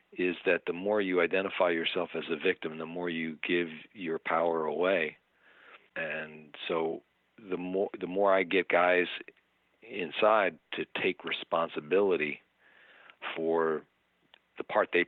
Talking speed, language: 135 wpm, English